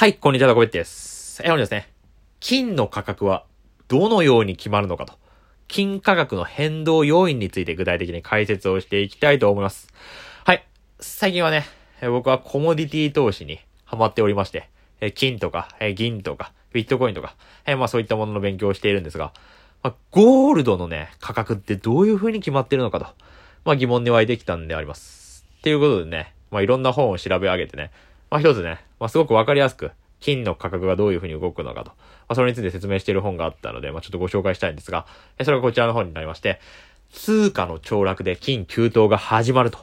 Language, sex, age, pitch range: Japanese, male, 20-39, 90-140 Hz